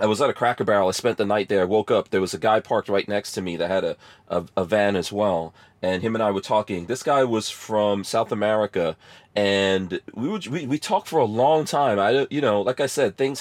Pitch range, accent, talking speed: 95-115 Hz, American, 270 wpm